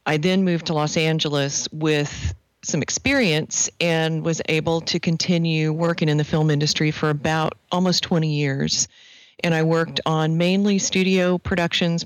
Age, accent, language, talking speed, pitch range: 40-59, American, English, 155 wpm, 150-170 Hz